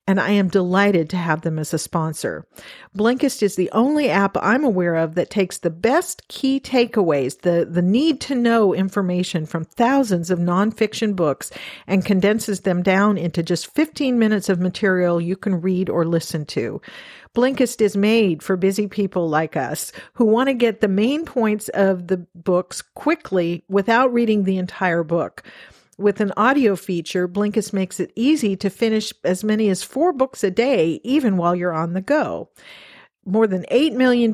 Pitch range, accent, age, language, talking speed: 180-225 Hz, American, 50-69, English, 180 wpm